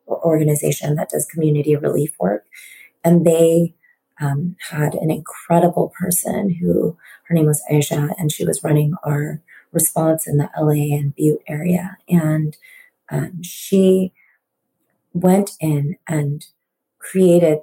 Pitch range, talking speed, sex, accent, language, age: 150-185 Hz, 125 wpm, female, American, English, 30-49